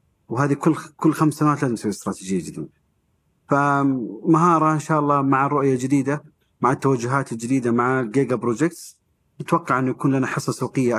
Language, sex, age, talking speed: Arabic, male, 40-59, 145 wpm